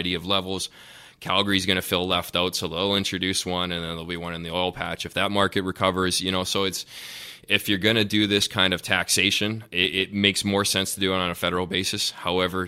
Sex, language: male, English